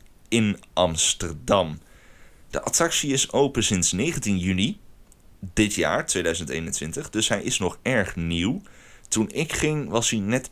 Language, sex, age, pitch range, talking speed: Dutch, male, 30-49, 85-110 Hz, 135 wpm